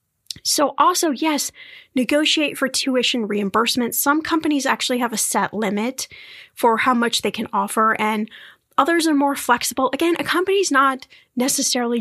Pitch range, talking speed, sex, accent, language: 220-285 Hz, 150 wpm, female, American, English